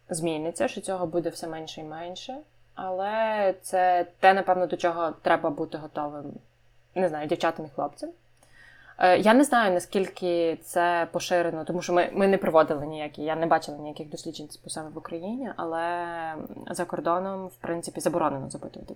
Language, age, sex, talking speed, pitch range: Ukrainian, 20-39, female, 160 wpm, 160-195 Hz